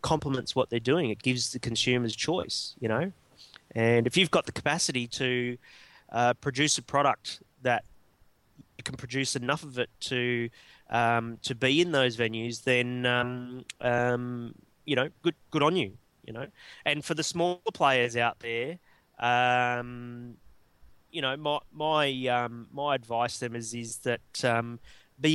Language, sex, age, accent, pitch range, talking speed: English, male, 20-39, Australian, 120-135 Hz, 165 wpm